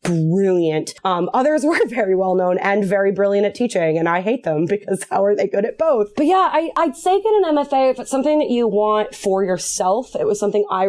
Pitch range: 180-260 Hz